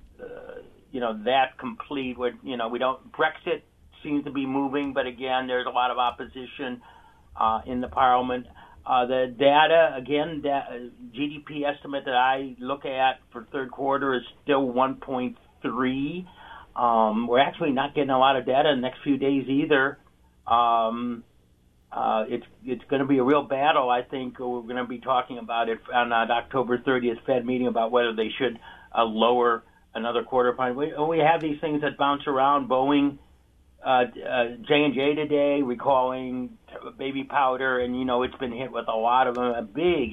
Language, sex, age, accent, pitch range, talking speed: English, male, 50-69, American, 120-140 Hz, 180 wpm